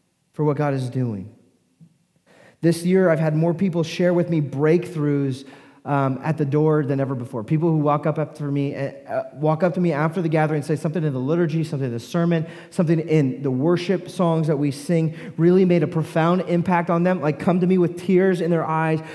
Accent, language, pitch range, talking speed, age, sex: American, English, 140-170 Hz, 220 wpm, 30-49, male